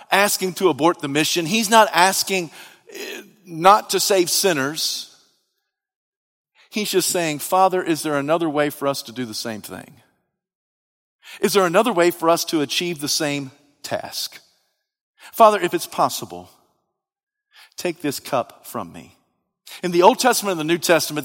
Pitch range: 180-275 Hz